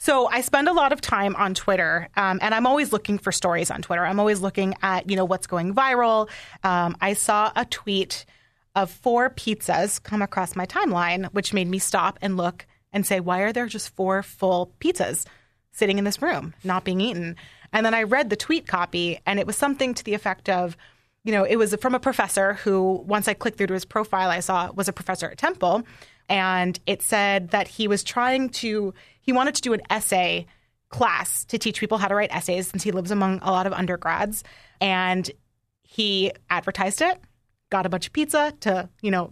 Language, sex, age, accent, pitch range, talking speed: English, female, 30-49, American, 185-220 Hz, 215 wpm